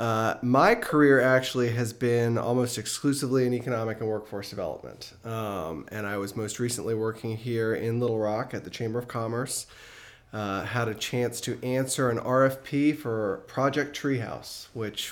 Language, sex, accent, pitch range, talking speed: English, male, American, 110-125 Hz, 165 wpm